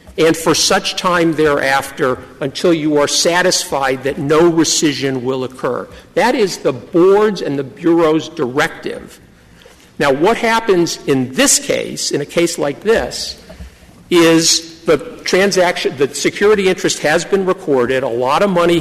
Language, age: English, 50-69